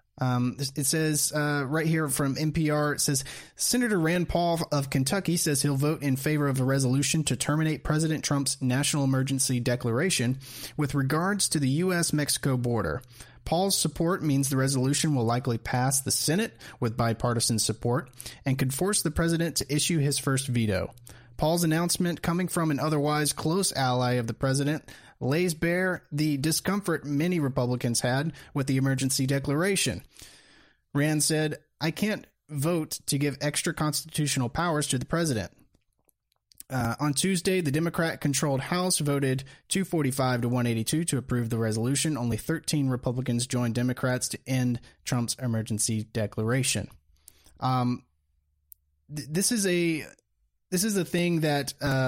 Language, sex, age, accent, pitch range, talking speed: English, male, 30-49, American, 125-160 Hz, 150 wpm